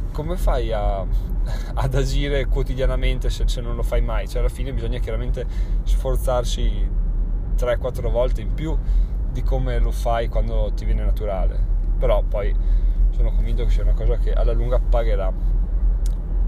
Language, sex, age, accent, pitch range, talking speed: Italian, male, 20-39, native, 105-130 Hz, 155 wpm